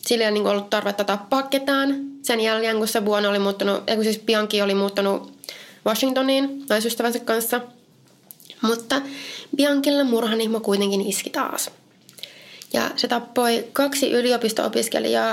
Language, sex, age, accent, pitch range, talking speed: Finnish, female, 20-39, native, 210-255 Hz, 115 wpm